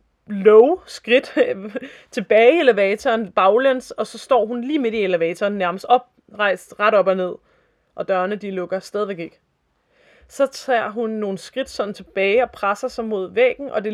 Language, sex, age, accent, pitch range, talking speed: Danish, female, 20-39, native, 200-255 Hz, 170 wpm